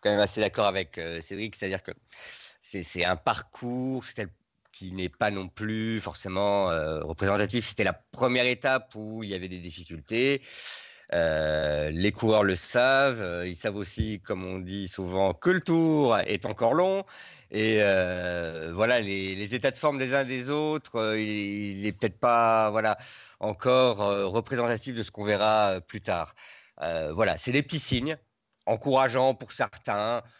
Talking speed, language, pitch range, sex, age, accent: 175 wpm, French, 90-120 Hz, male, 50-69, French